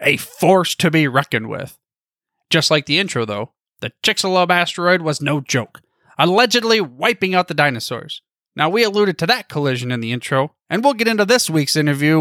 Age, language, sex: 30-49, English, male